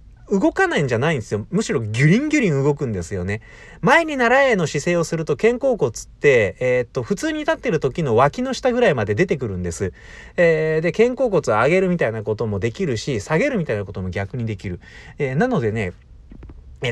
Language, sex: Japanese, male